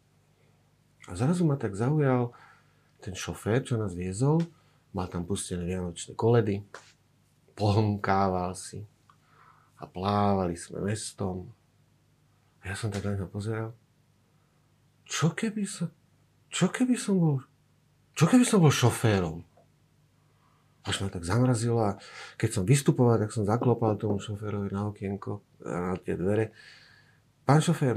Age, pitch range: 50-69, 100-140 Hz